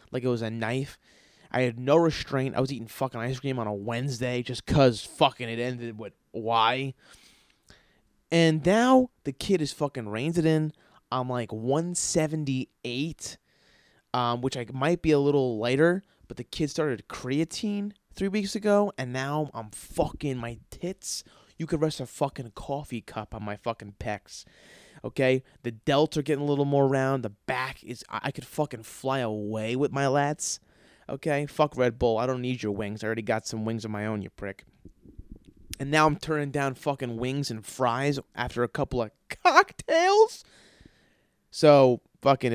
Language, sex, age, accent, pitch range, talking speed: English, male, 20-39, American, 120-155 Hz, 180 wpm